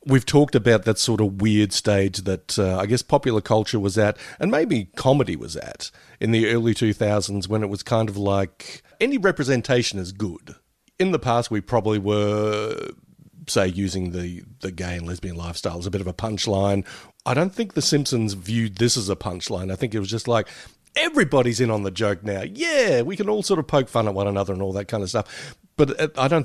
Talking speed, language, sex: 220 wpm, English, male